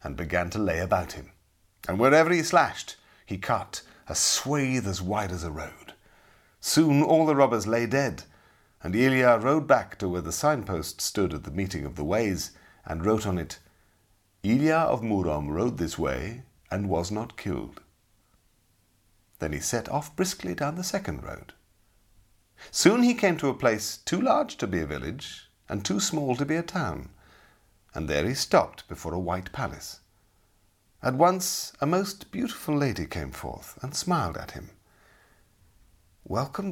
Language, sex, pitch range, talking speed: English, male, 90-145 Hz, 170 wpm